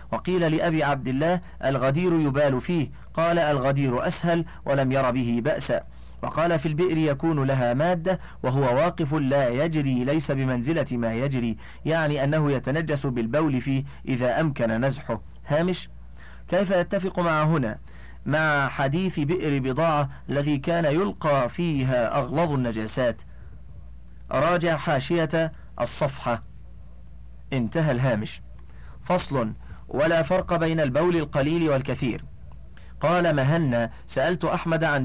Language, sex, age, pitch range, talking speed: Arabic, male, 40-59, 125-165 Hz, 115 wpm